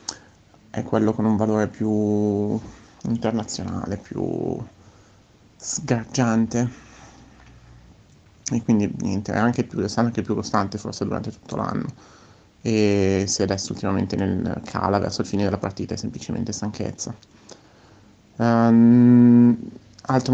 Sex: male